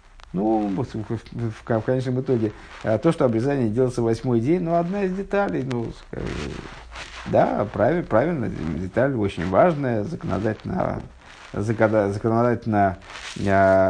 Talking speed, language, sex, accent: 140 wpm, Russian, male, native